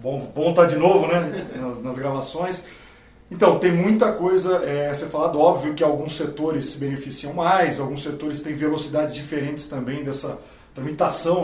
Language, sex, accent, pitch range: Portuguese, male, Brazilian, 140-170 Hz